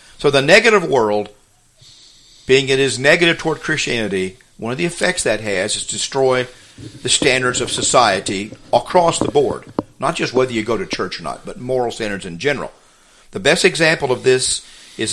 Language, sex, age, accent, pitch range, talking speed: English, male, 50-69, American, 110-140 Hz, 185 wpm